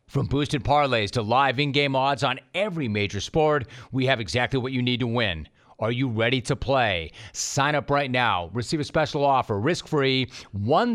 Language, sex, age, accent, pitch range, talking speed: English, male, 40-59, American, 115-145 Hz, 180 wpm